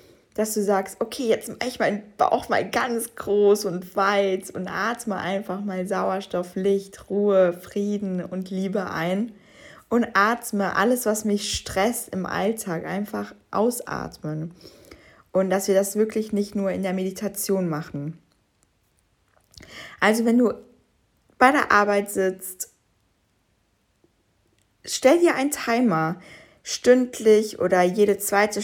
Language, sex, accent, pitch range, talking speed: German, female, German, 175-220 Hz, 130 wpm